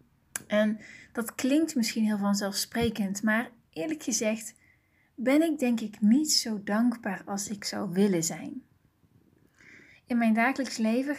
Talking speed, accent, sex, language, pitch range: 135 wpm, Dutch, female, Dutch, 200-265 Hz